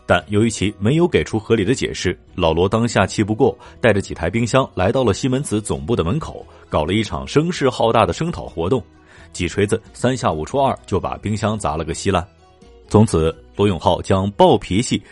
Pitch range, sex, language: 90-115 Hz, male, Chinese